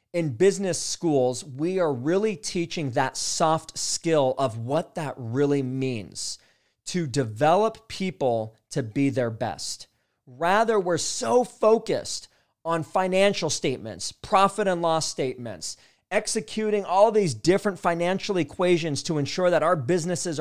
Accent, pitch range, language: American, 140-190 Hz, English